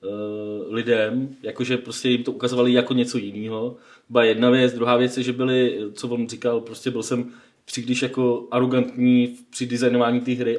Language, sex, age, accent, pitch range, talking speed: Czech, male, 20-39, native, 115-125 Hz, 170 wpm